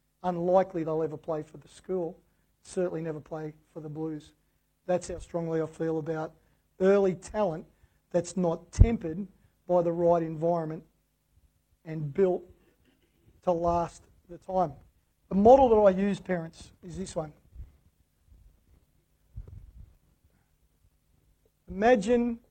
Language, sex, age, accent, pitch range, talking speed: English, male, 50-69, Australian, 155-190 Hz, 115 wpm